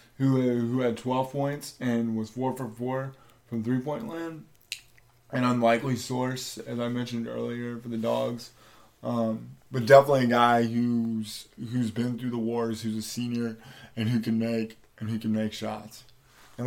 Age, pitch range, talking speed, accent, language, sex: 20-39, 115-125 Hz, 175 wpm, American, English, male